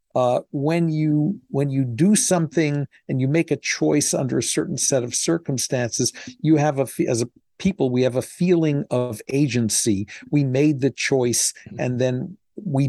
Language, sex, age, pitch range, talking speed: English, male, 50-69, 125-155 Hz, 170 wpm